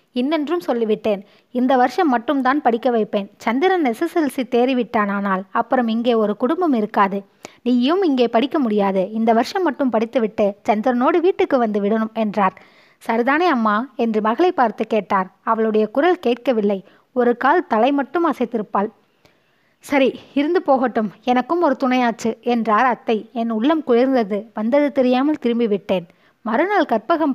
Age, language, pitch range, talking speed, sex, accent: 20-39, Tamil, 215-285 Hz, 125 wpm, female, native